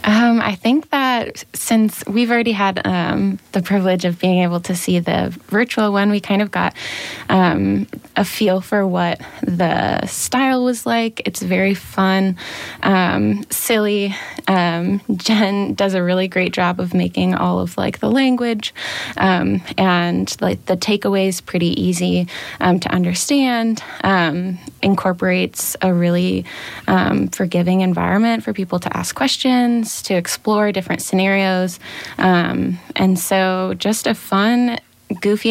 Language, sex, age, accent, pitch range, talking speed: English, female, 20-39, American, 175-205 Hz, 140 wpm